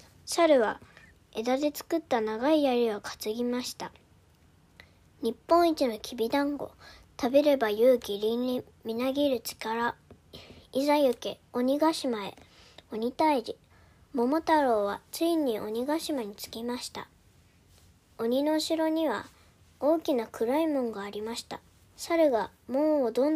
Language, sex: Japanese, male